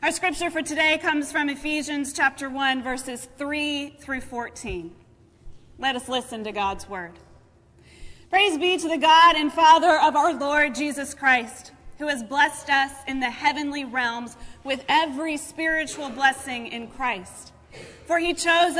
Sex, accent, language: female, American, English